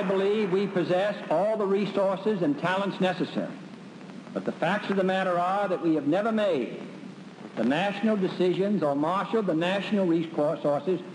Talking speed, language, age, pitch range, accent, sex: 160 wpm, English, 60-79, 170-200 Hz, American, male